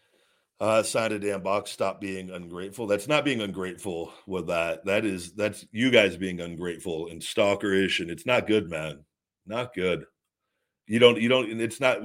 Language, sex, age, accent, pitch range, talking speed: English, male, 50-69, American, 95-120 Hz, 185 wpm